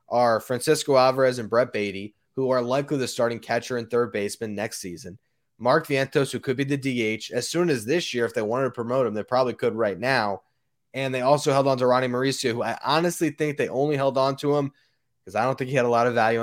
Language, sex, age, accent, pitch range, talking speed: English, male, 20-39, American, 115-145 Hz, 250 wpm